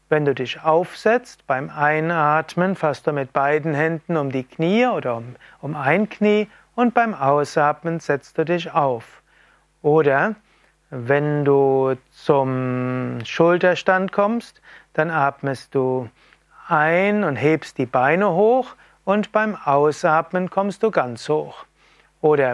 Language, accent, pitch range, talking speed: German, German, 145-195 Hz, 130 wpm